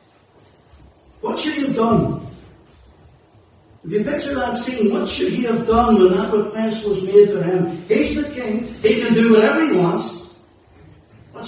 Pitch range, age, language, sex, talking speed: 140-215 Hz, 60-79, English, male, 165 wpm